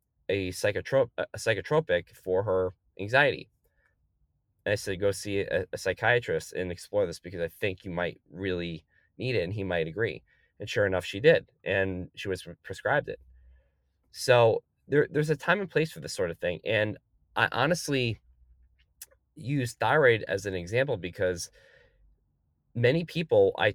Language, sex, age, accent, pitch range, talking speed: English, male, 20-39, American, 95-135 Hz, 160 wpm